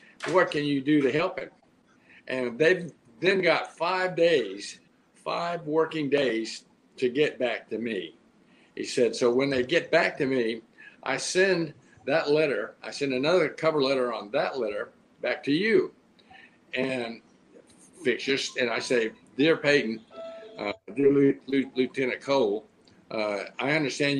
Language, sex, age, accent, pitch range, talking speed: English, male, 50-69, American, 125-160 Hz, 150 wpm